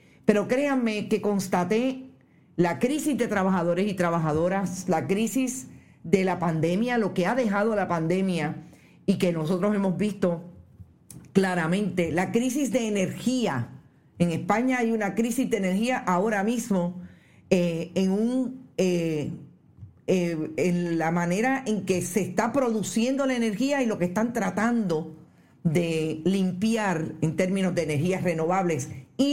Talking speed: 135 wpm